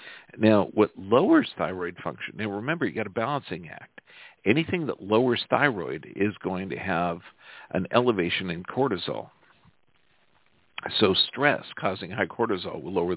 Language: English